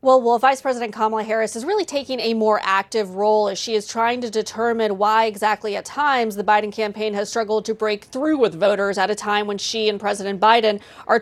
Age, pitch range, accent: 30-49, 205-235 Hz, American